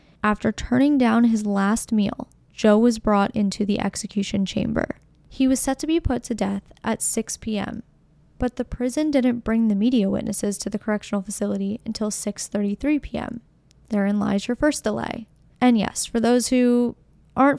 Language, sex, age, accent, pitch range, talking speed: English, female, 10-29, American, 200-240 Hz, 170 wpm